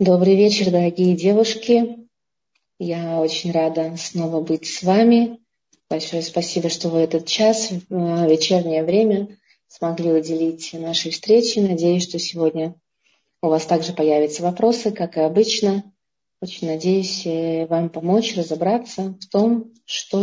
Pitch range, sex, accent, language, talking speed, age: 165-200 Hz, female, native, Russian, 130 wpm, 30-49